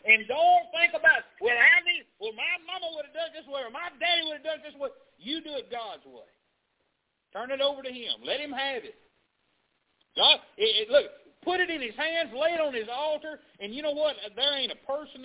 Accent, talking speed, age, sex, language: American, 225 wpm, 50-69, male, English